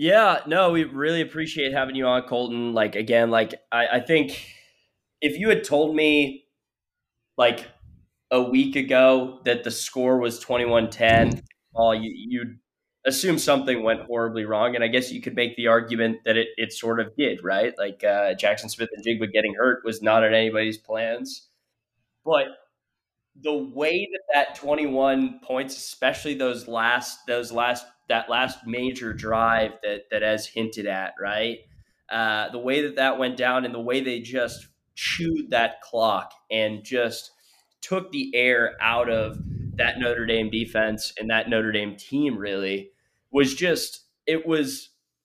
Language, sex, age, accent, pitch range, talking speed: English, male, 20-39, American, 115-135 Hz, 165 wpm